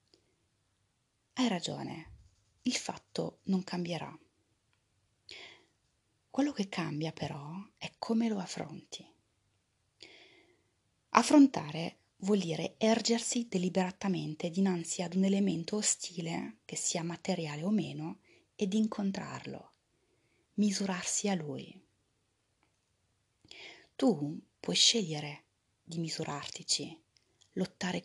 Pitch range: 155-200 Hz